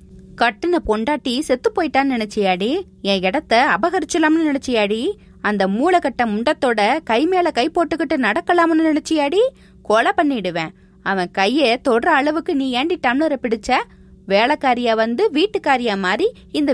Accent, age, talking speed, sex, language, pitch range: native, 20-39, 60 wpm, female, Tamil, 215-330 Hz